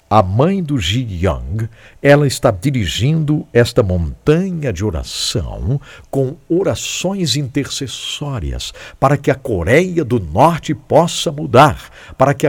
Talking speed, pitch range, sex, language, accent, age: 120 wpm, 105-170 Hz, male, English, Brazilian, 60-79